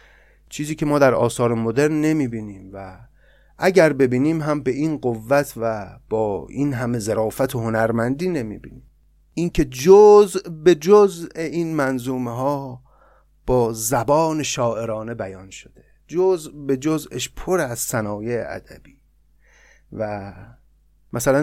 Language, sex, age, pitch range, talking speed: Persian, male, 30-49, 115-150 Hz, 130 wpm